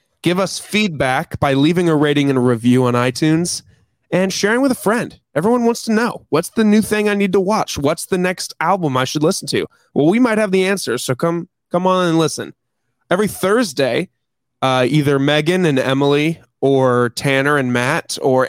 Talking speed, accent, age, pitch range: 200 wpm, American, 20-39, 130-180 Hz